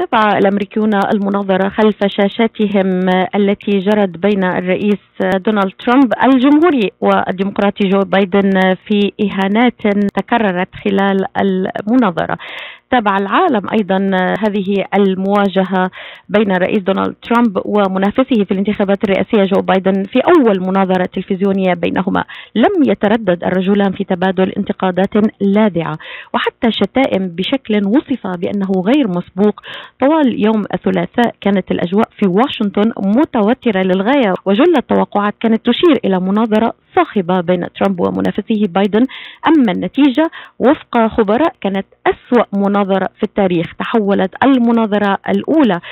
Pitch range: 190-230 Hz